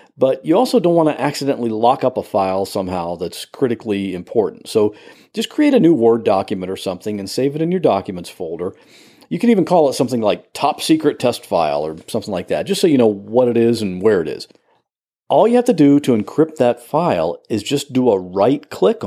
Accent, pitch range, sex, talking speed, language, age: American, 110-155 Hz, male, 225 wpm, English, 50-69